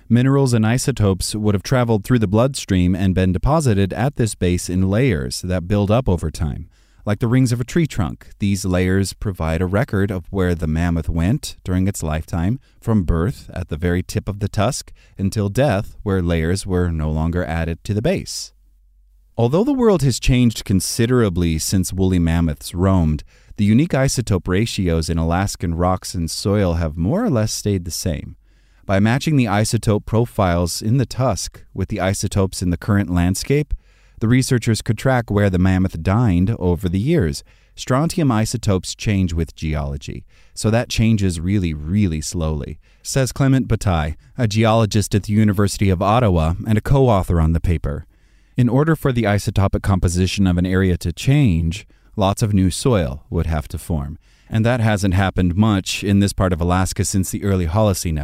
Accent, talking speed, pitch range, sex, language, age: American, 180 wpm, 85-110 Hz, male, English, 30-49